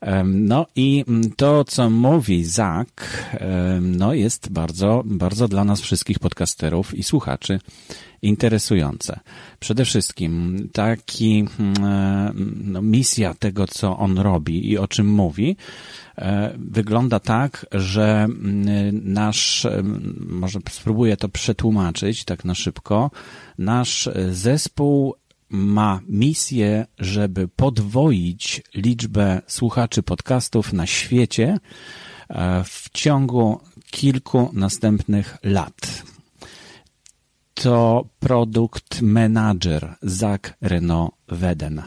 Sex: male